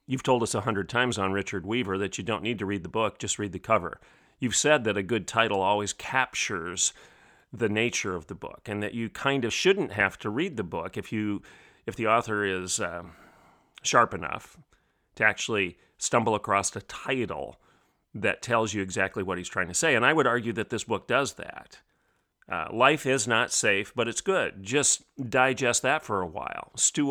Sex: male